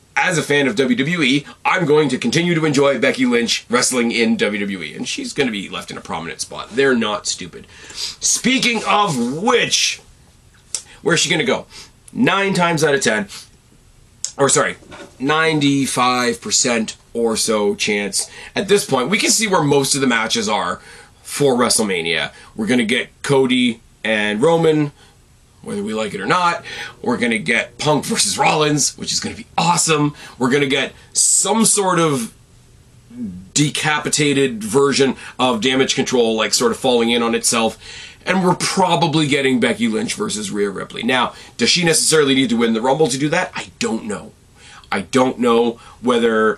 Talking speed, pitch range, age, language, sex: 175 wpm, 120-170 Hz, 30-49, English, male